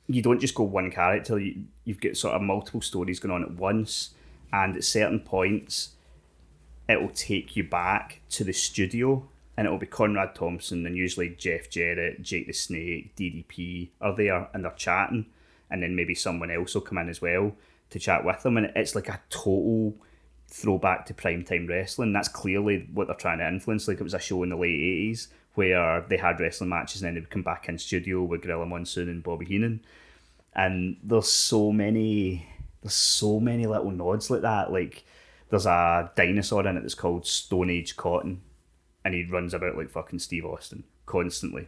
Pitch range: 85-100 Hz